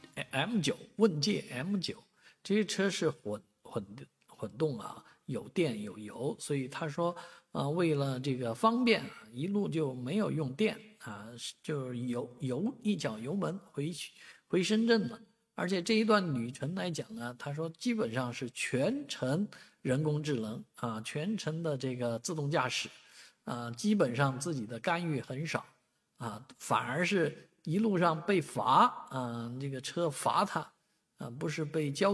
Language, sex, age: Chinese, male, 50-69